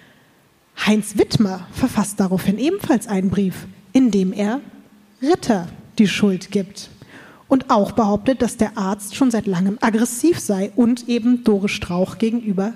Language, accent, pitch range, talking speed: German, German, 195-240 Hz, 140 wpm